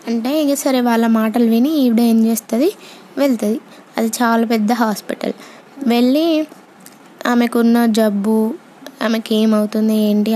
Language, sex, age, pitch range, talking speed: Telugu, female, 20-39, 225-275 Hz, 115 wpm